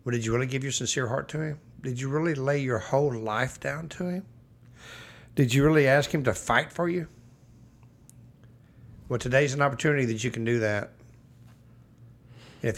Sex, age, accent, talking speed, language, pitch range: male, 60-79, American, 185 wpm, English, 115-125 Hz